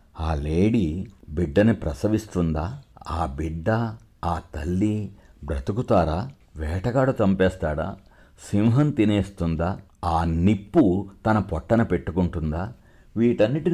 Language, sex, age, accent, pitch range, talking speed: Telugu, male, 60-79, native, 85-115 Hz, 85 wpm